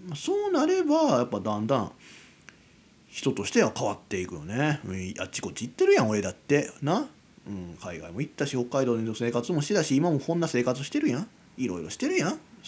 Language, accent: Japanese, native